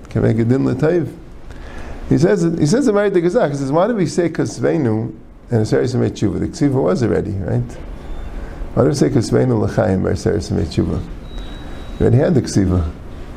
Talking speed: 155 wpm